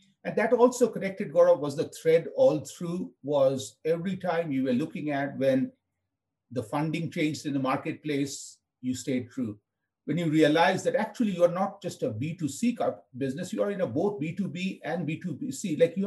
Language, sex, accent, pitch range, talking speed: English, male, Indian, 135-195 Hz, 180 wpm